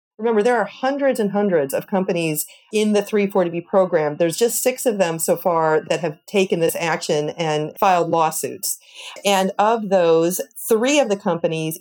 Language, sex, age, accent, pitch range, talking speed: English, female, 40-59, American, 170-215 Hz, 175 wpm